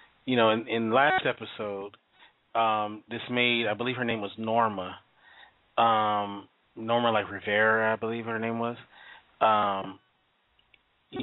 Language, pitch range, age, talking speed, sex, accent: English, 100-120 Hz, 30-49, 140 wpm, male, American